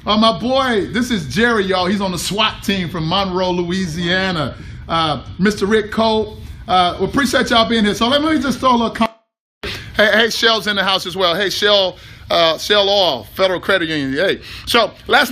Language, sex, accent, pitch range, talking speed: English, male, American, 205-275 Hz, 205 wpm